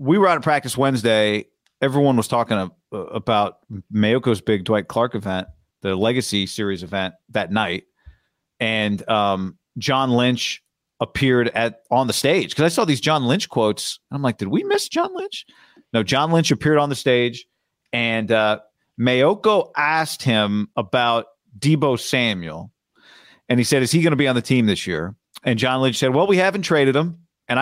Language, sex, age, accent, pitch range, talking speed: English, male, 40-59, American, 115-150 Hz, 180 wpm